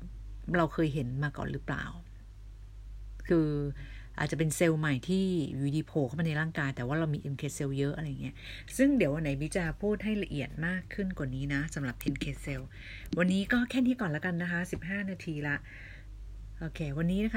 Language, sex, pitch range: Thai, female, 140-185 Hz